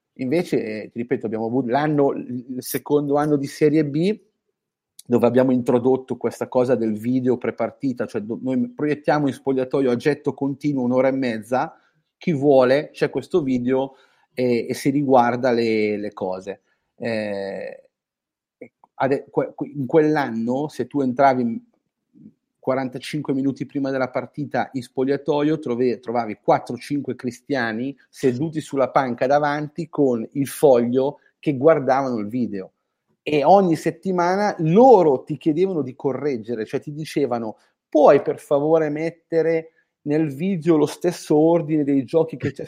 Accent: native